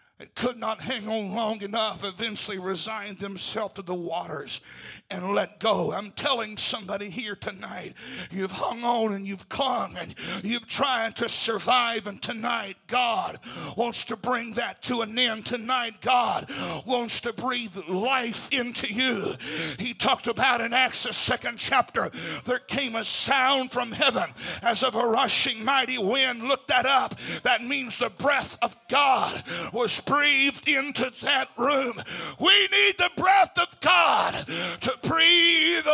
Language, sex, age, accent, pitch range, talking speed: English, male, 60-79, American, 230-325 Hz, 150 wpm